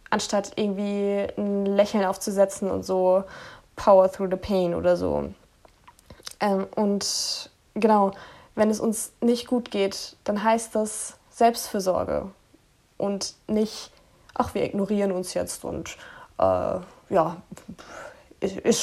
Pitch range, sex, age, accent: 195-220 Hz, female, 20-39, German